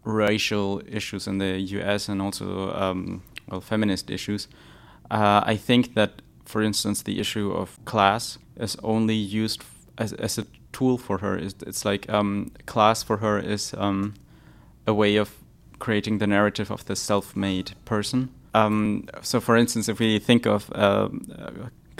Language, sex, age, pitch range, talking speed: English, male, 20-39, 95-110 Hz, 160 wpm